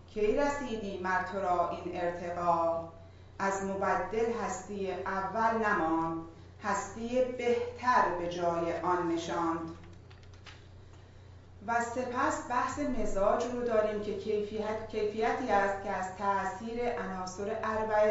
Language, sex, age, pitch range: Persian, female, 40-59, 170-225 Hz